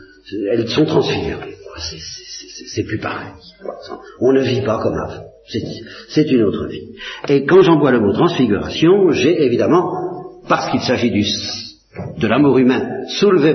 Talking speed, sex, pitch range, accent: 160 wpm, male, 105-140 Hz, French